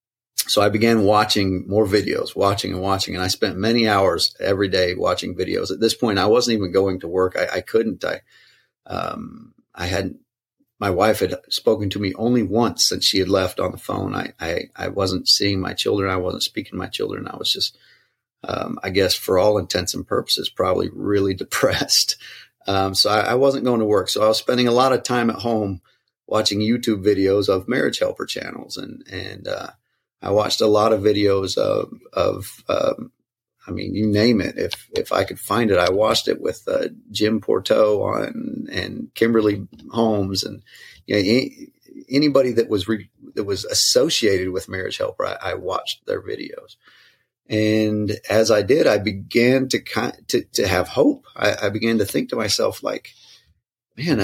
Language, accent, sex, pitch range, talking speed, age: English, American, male, 100-130 Hz, 190 wpm, 30-49